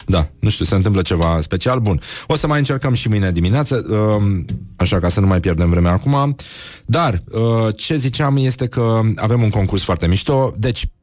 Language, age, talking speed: Romanian, 30-49, 185 wpm